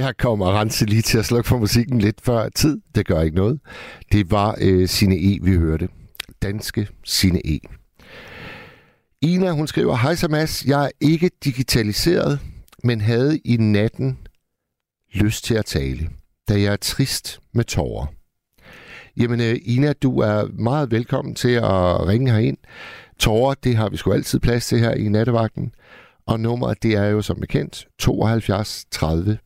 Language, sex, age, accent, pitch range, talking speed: Danish, male, 60-79, native, 95-125 Hz, 165 wpm